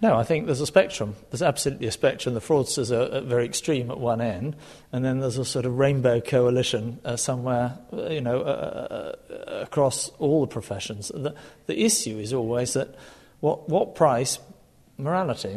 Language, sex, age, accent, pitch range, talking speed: English, male, 50-69, British, 115-140 Hz, 185 wpm